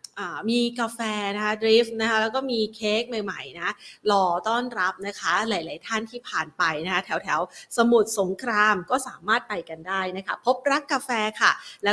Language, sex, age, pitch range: Thai, female, 30-49, 205-265 Hz